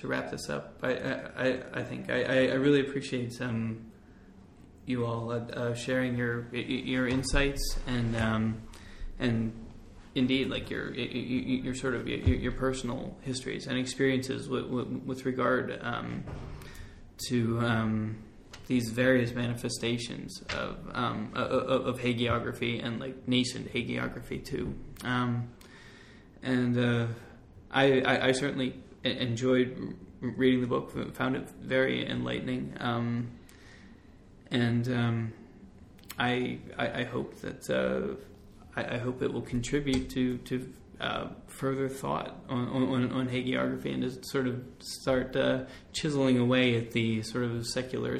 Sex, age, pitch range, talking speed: male, 20-39, 110-130 Hz, 135 wpm